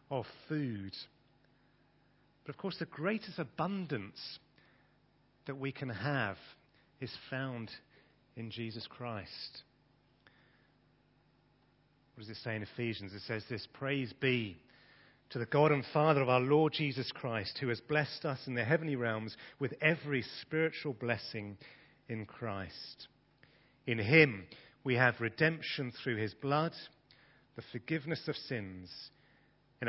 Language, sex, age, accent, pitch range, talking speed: English, male, 40-59, British, 115-150 Hz, 130 wpm